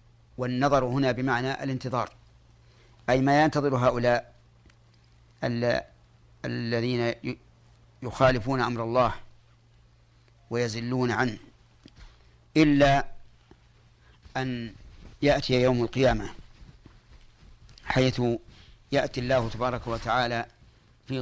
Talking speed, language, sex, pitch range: 70 wpm, Arabic, male, 110-125 Hz